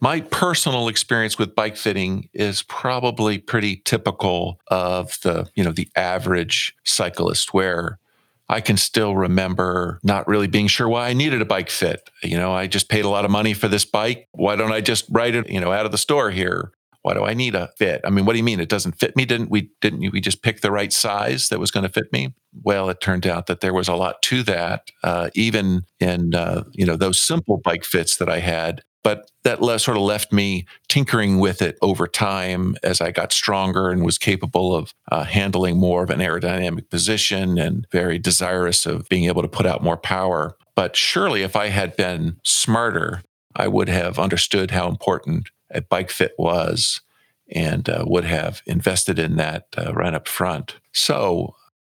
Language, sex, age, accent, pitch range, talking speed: English, male, 50-69, American, 90-110 Hz, 205 wpm